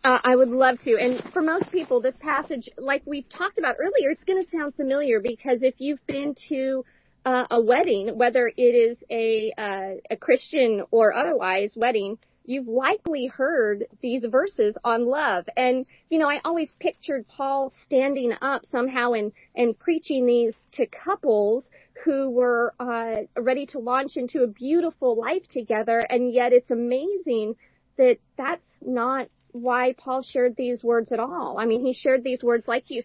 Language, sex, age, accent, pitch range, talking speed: English, female, 40-59, American, 235-280 Hz, 170 wpm